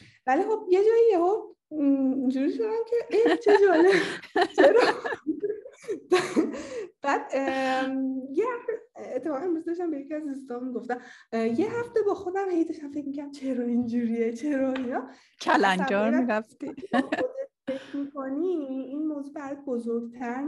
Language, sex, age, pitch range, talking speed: Persian, female, 20-39, 260-390 Hz, 100 wpm